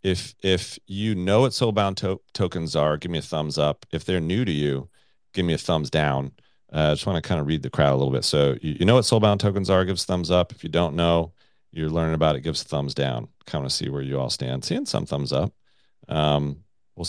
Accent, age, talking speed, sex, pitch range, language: American, 40-59, 255 wpm, male, 75-95 Hz, English